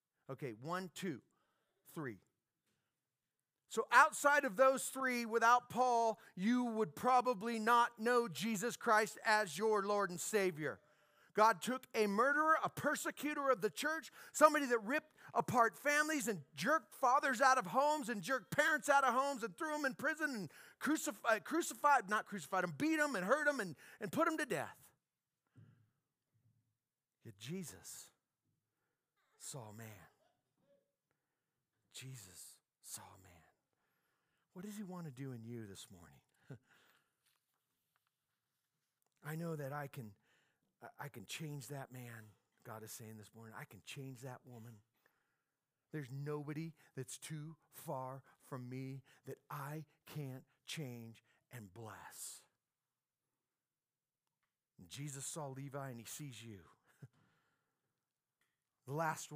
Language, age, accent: English, 40-59, American